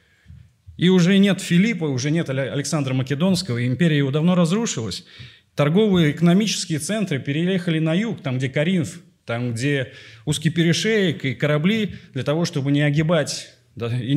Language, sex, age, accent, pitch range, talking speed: Russian, male, 30-49, native, 130-175 Hz, 150 wpm